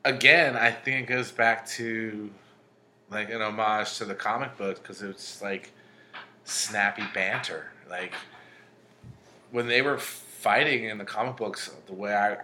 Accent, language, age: American, English, 30-49